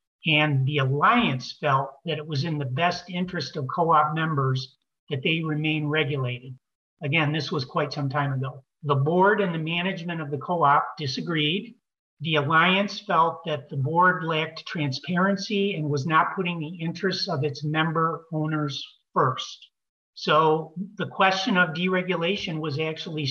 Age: 50-69